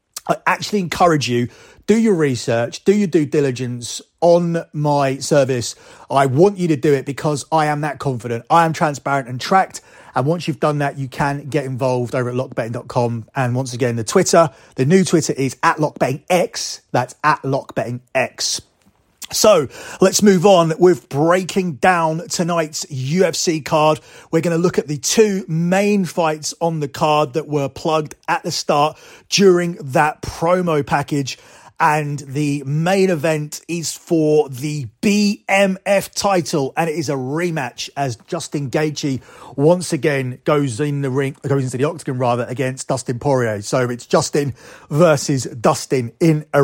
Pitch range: 135-170 Hz